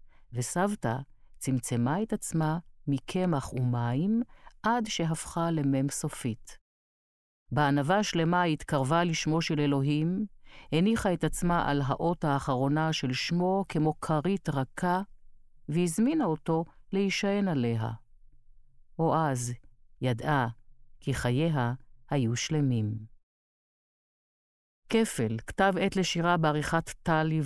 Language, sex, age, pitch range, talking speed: Hebrew, female, 50-69, 130-180 Hz, 95 wpm